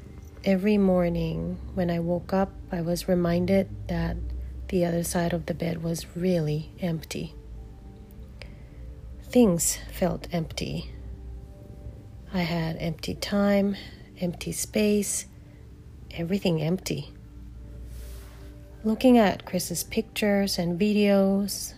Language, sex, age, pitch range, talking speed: English, female, 40-59, 140-185 Hz, 100 wpm